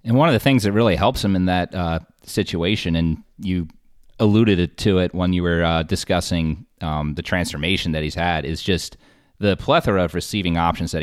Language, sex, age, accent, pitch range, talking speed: English, male, 30-49, American, 80-95 Hz, 200 wpm